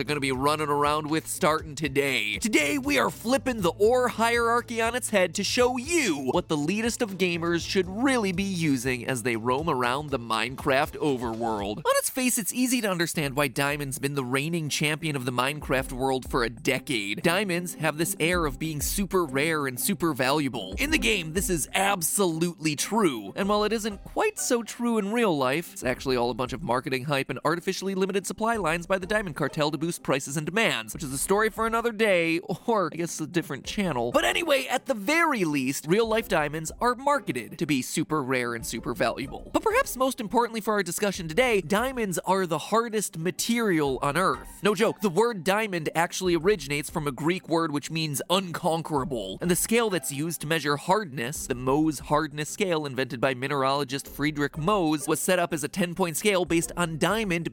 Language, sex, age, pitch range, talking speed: English, male, 20-39, 145-210 Hz, 200 wpm